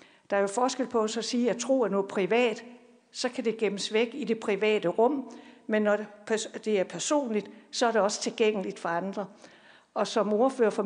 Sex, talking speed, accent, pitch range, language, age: female, 210 wpm, native, 205-245 Hz, Danish, 60-79